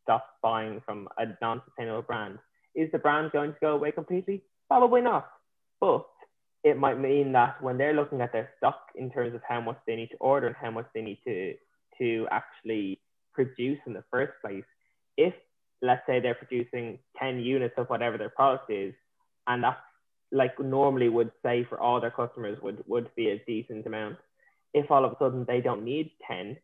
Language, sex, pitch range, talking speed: English, male, 115-140 Hz, 195 wpm